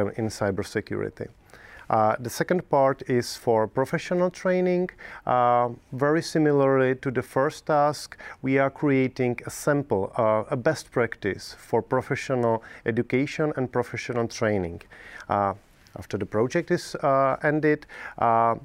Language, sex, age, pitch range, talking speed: English, male, 40-59, 110-135 Hz, 130 wpm